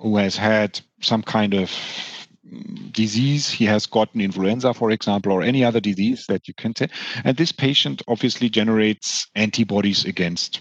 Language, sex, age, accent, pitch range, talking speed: English, male, 40-59, German, 110-145 Hz, 160 wpm